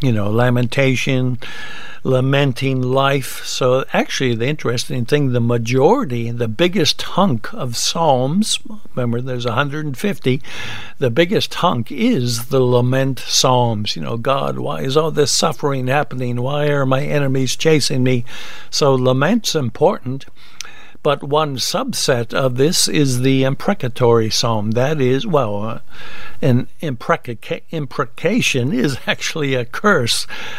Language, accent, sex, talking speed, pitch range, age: English, American, male, 125 wpm, 125-155 Hz, 60-79